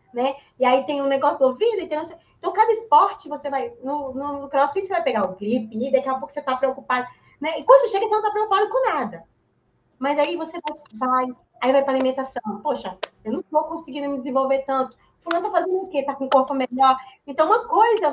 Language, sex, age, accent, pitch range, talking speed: Portuguese, female, 20-39, Brazilian, 245-335 Hz, 225 wpm